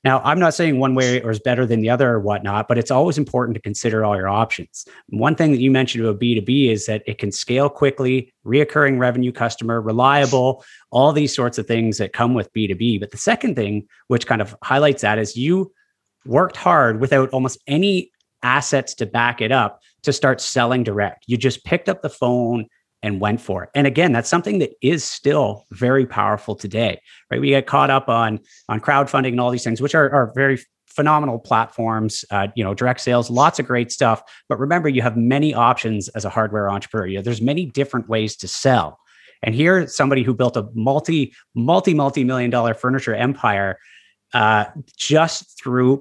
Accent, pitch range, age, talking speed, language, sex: American, 110-135 Hz, 30-49, 200 wpm, English, male